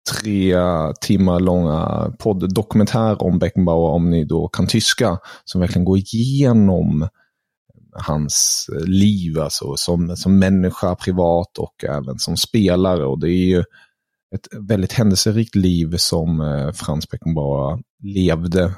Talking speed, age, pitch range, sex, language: 120 wpm, 30-49, 85-105 Hz, male, Swedish